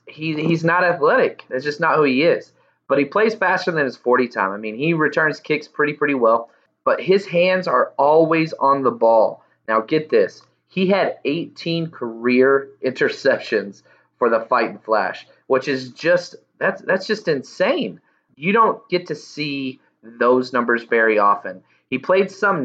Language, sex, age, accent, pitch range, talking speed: English, male, 30-49, American, 120-175 Hz, 175 wpm